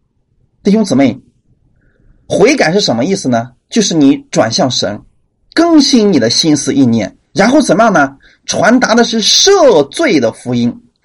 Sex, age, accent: male, 30-49, native